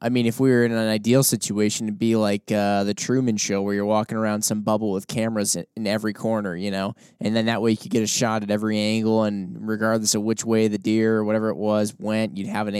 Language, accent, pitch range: English, American, 105-125 Hz